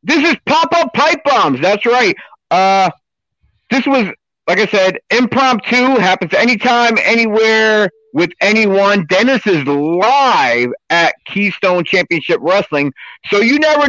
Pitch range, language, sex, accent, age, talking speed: 170-240 Hz, English, male, American, 50-69, 125 wpm